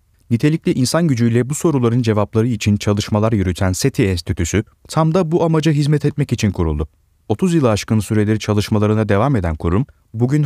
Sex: male